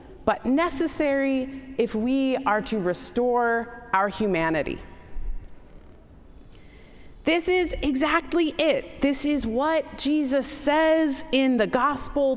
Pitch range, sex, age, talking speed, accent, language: 195-270 Hz, female, 30-49, 100 wpm, American, English